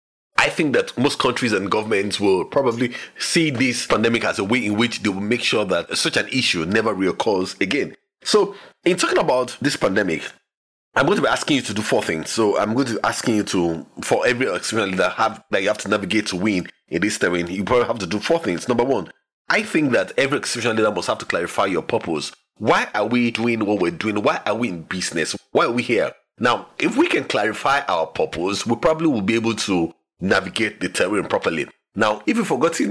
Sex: male